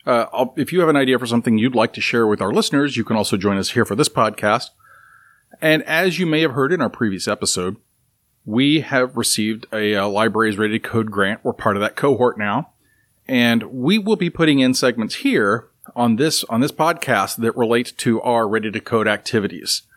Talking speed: 215 wpm